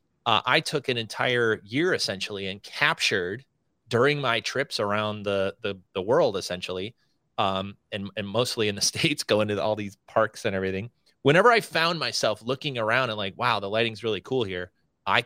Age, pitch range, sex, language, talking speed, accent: 30-49, 100-125 Hz, male, English, 185 wpm, American